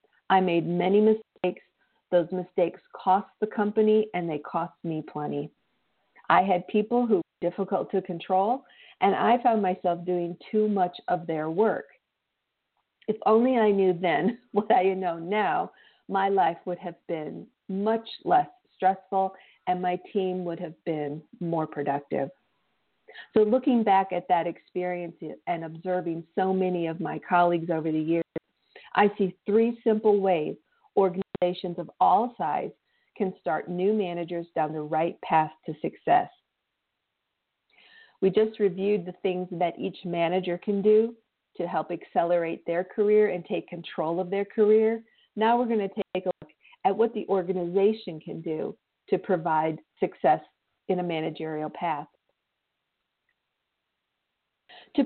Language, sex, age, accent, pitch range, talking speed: English, female, 50-69, American, 175-215 Hz, 145 wpm